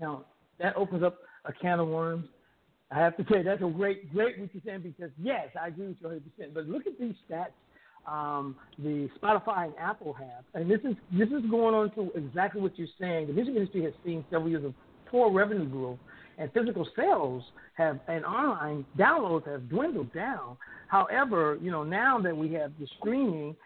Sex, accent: male, American